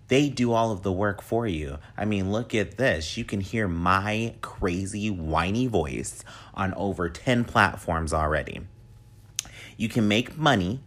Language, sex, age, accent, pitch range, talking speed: English, male, 30-49, American, 90-115 Hz, 160 wpm